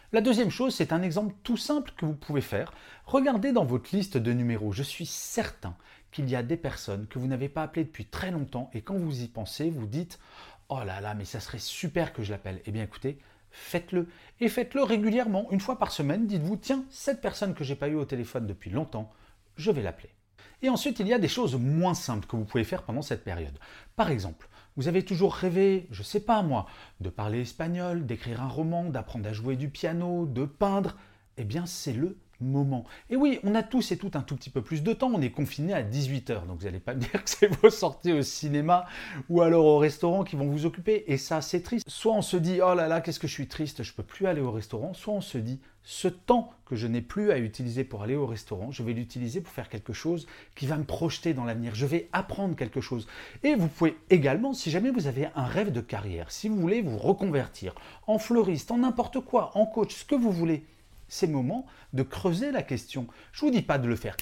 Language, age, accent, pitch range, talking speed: French, 40-59, French, 120-185 Hz, 245 wpm